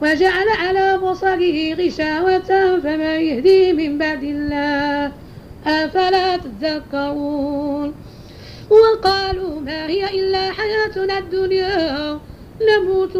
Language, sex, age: Arabic, female, 40-59